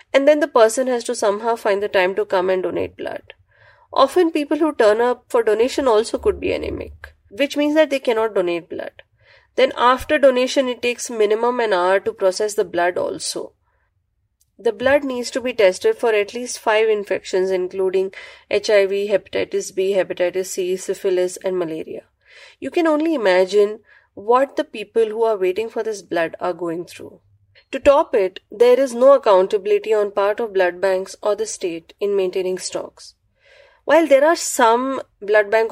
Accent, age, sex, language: Indian, 20-39, female, English